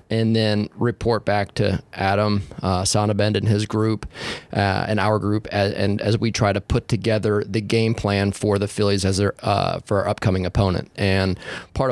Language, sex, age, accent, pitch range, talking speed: English, male, 20-39, American, 100-115 Hz, 190 wpm